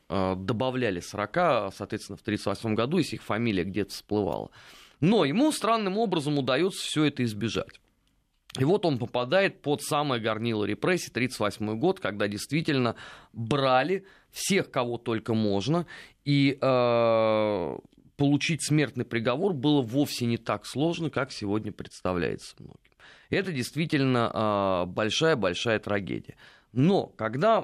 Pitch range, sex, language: 110-155 Hz, male, Russian